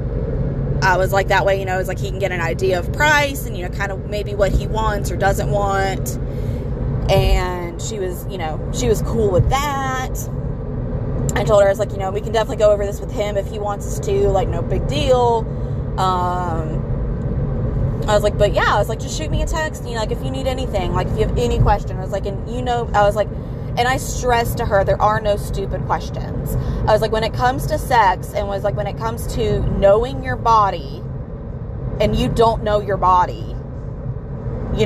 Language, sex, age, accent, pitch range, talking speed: English, female, 20-39, American, 125-195 Hz, 230 wpm